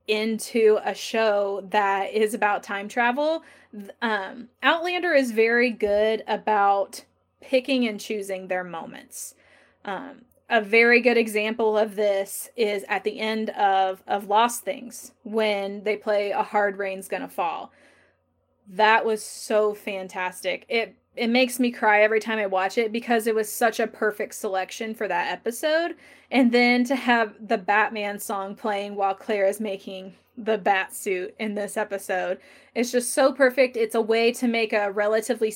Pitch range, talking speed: 200-235 Hz, 160 wpm